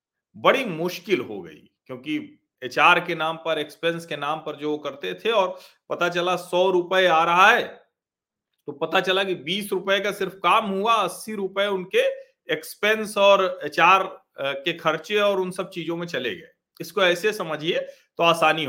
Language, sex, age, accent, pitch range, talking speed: Hindi, male, 40-59, native, 150-215 Hz, 165 wpm